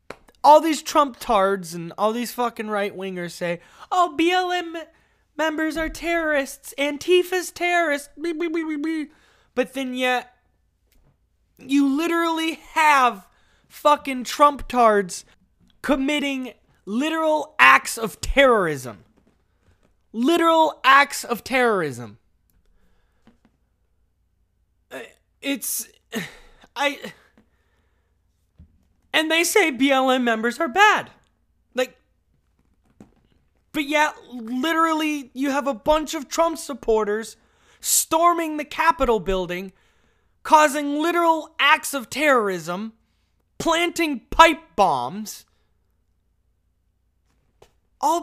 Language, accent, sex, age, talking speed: English, American, male, 20-39, 85 wpm